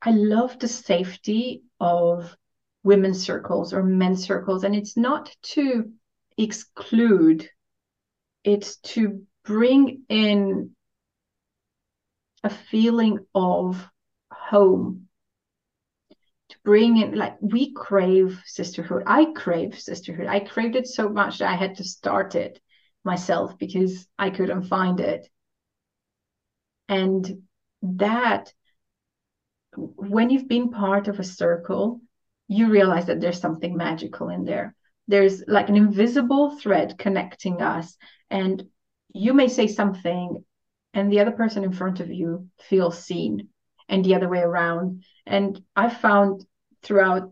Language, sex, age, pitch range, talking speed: English, female, 30-49, 185-220 Hz, 125 wpm